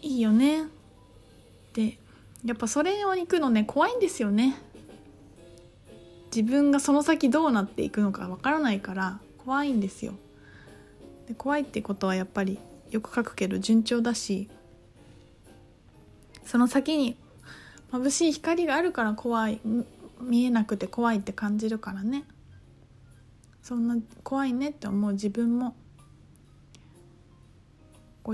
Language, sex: Japanese, female